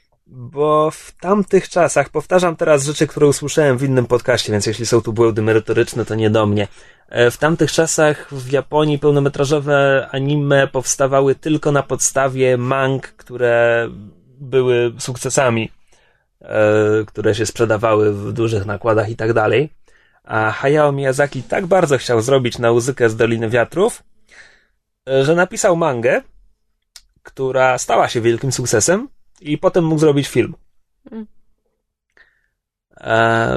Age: 20-39